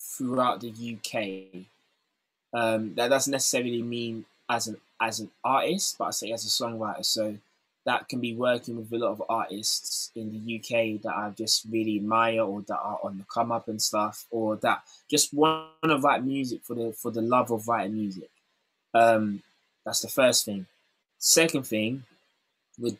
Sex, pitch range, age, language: male, 110-125 Hz, 20-39, English